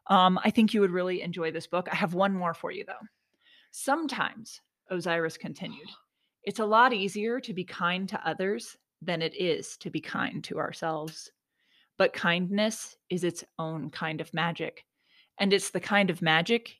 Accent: American